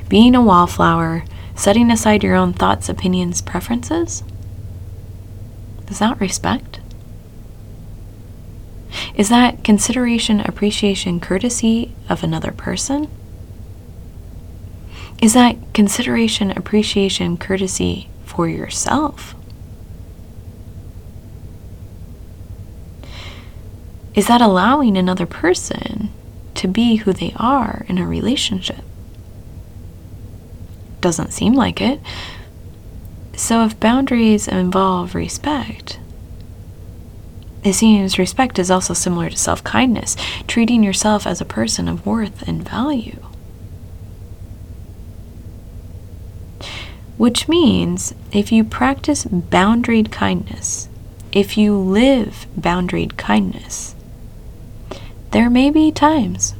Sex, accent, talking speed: female, American, 90 wpm